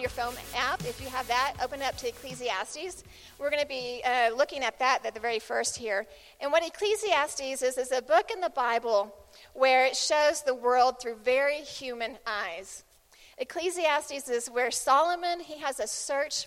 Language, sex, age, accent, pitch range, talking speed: English, female, 40-59, American, 235-290 Hz, 180 wpm